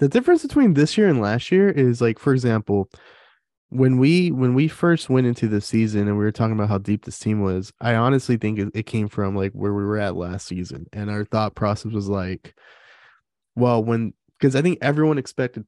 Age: 20-39